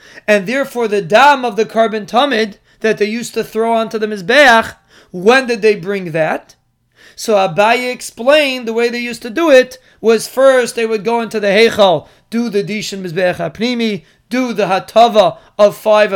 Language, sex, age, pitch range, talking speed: English, male, 30-49, 205-240 Hz, 185 wpm